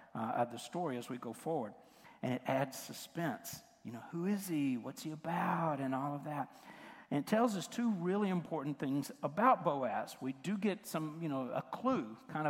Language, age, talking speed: English, 60-79, 205 wpm